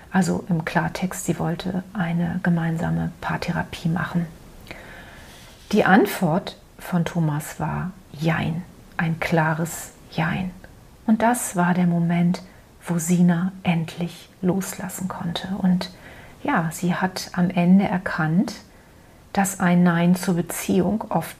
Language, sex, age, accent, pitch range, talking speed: German, female, 40-59, German, 170-210 Hz, 115 wpm